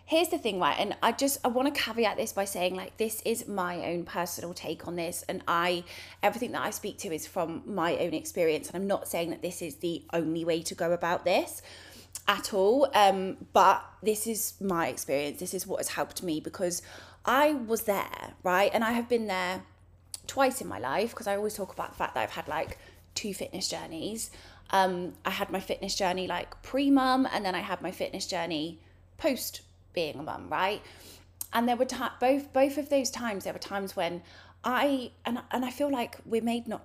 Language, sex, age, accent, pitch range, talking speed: English, female, 20-39, British, 170-245 Hz, 215 wpm